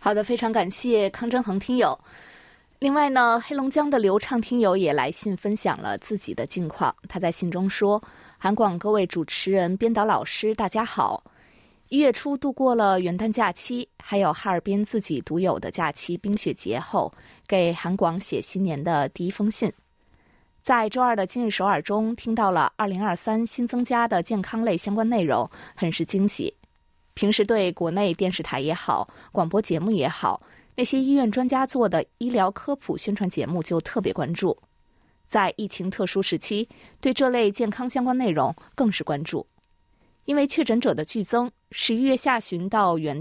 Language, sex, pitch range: Chinese, female, 185-240 Hz